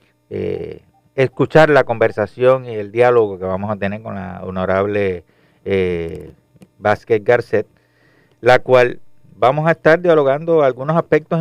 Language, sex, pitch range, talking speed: Spanish, male, 110-150 Hz, 130 wpm